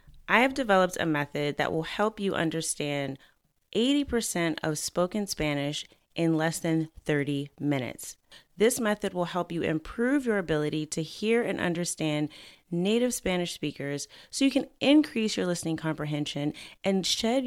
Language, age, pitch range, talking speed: English, 30-49, 155-200 Hz, 150 wpm